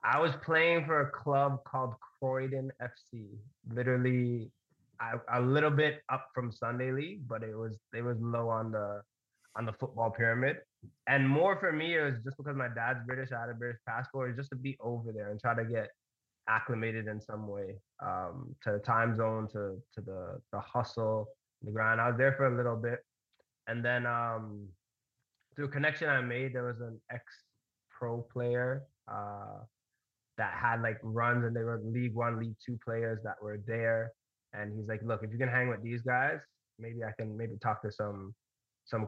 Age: 20-39